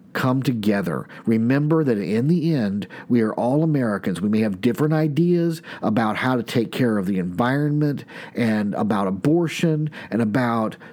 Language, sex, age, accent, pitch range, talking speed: English, male, 50-69, American, 115-155 Hz, 160 wpm